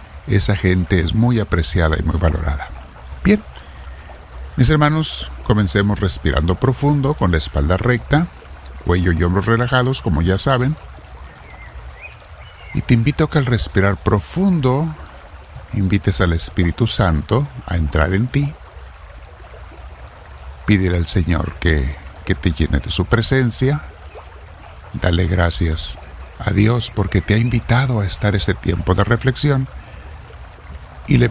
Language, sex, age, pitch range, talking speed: Spanish, male, 50-69, 75-115 Hz, 125 wpm